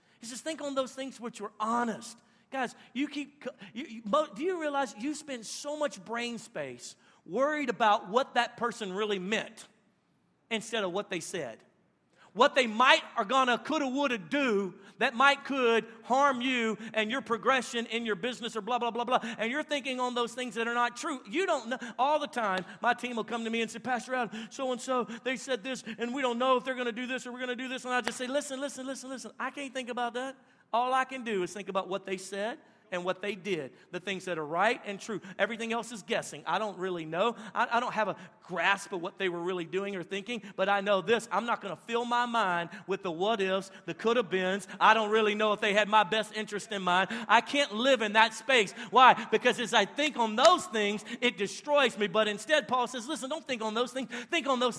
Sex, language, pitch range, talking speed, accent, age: male, English, 205-255 Hz, 245 wpm, American, 40-59